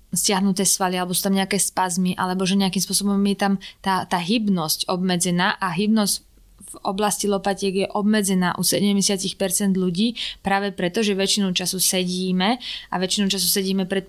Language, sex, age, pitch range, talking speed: Slovak, female, 20-39, 180-205 Hz, 160 wpm